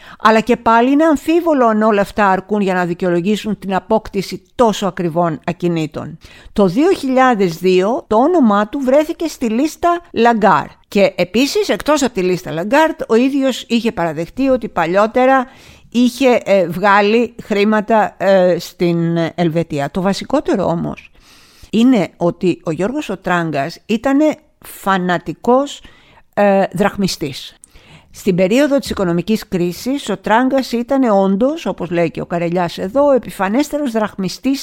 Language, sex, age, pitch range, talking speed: Greek, female, 50-69, 180-250 Hz, 125 wpm